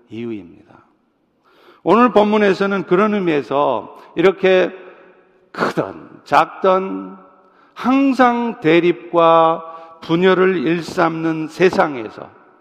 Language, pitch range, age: Korean, 160-200 Hz, 50-69